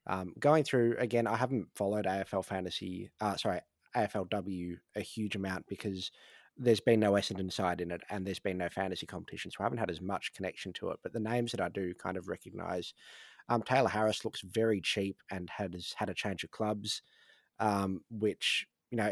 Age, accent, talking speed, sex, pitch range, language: 20-39, Australian, 200 wpm, male, 95-115 Hz, English